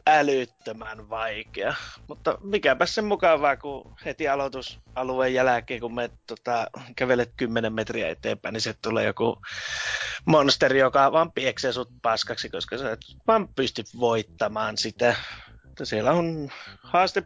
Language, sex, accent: Finnish, male, native